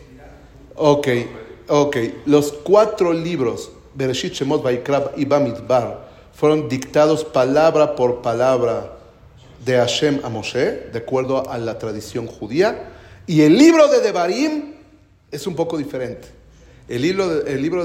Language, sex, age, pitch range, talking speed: Spanish, male, 40-59, 125-160 Hz, 120 wpm